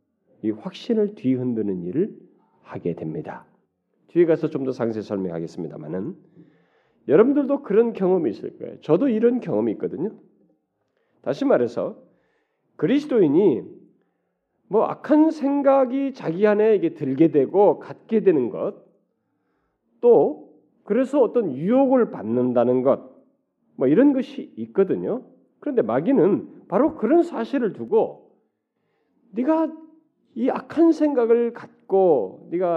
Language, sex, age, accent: Korean, male, 40-59, native